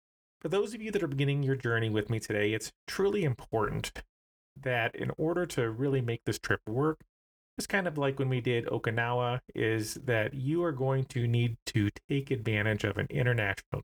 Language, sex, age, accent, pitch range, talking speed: English, male, 30-49, American, 110-145 Hz, 195 wpm